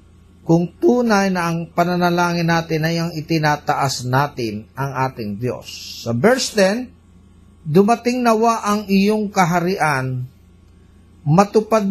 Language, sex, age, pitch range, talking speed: Filipino, male, 50-69, 140-210 Hz, 110 wpm